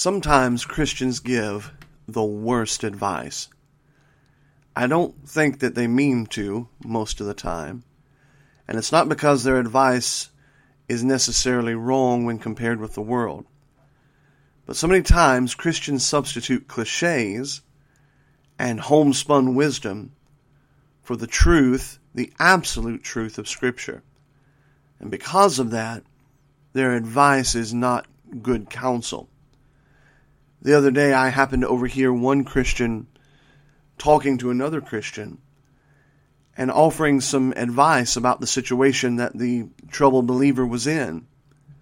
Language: English